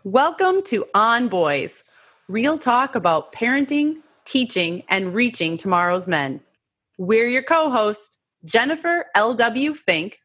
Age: 30-49